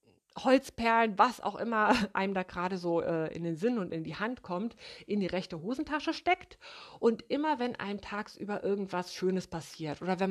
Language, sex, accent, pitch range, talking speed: German, female, German, 175-240 Hz, 185 wpm